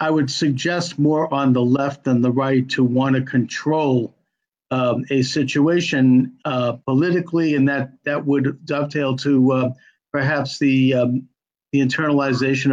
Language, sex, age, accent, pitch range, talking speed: English, male, 50-69, American, 130-160 Hz, 145 wpm